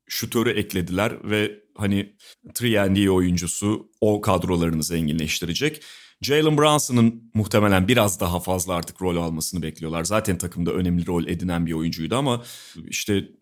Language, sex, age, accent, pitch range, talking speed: Turkish, male, 30-49, native, 95-125 Hz, 130 wpm